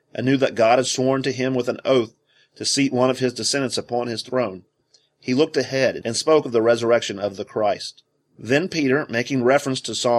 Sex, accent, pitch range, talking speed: male, American, 110-135 Hz, 220 wpm